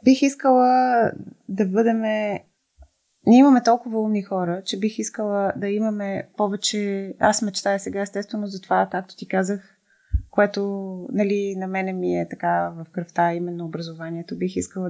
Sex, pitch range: female, 175-200 Hz